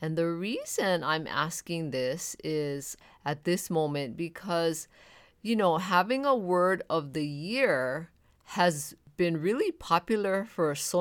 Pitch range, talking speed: 140-175 Hz, 135 wpm